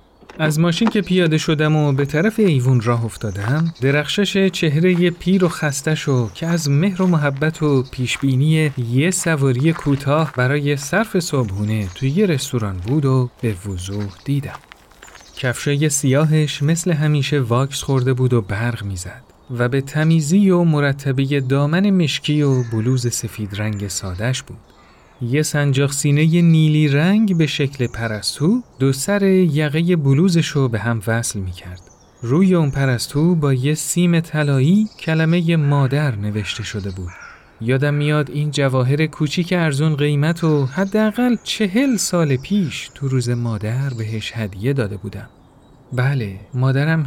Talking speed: 140 wpm